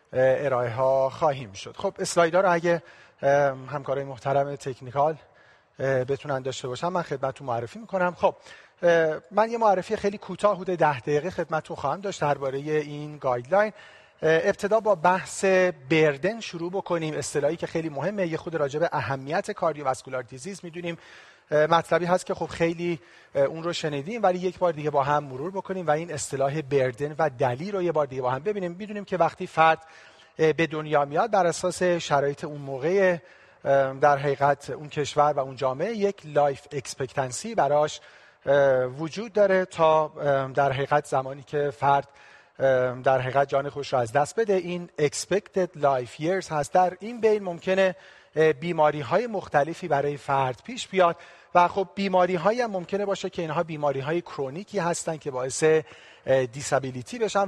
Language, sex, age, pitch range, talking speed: Persian, male, 40-59, 140-185 Hz, 160 wpm